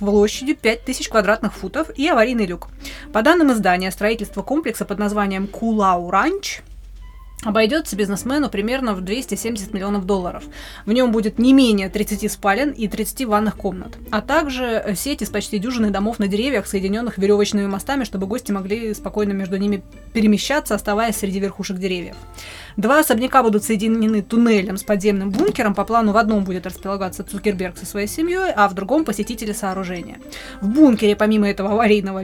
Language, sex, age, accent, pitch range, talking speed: Russian, female, 20-39, native, 200-230 Hz, 160 wpm